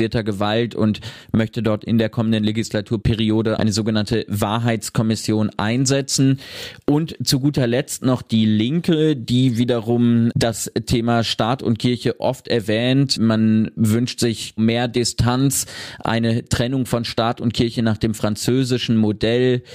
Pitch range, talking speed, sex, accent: 110-125 Hz, 130 wpm, male, German